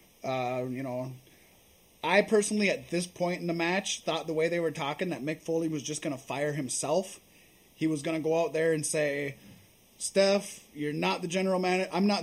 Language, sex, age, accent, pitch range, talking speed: English, male, 20-39, American, 155-185 Hz, 210 wpm